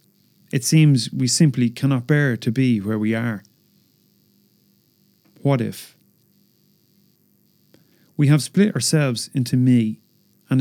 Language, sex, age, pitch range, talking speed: English, male, 40-59, 120-145 Hz, 115 wpm